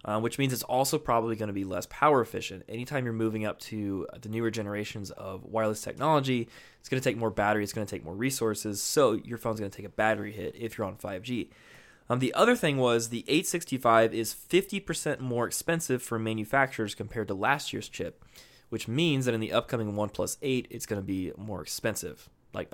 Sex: male